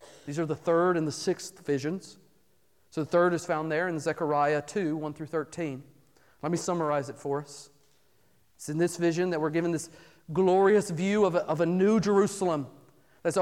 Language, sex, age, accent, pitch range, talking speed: English, male, 40-59, American, 150-225 Hz, 190 wpm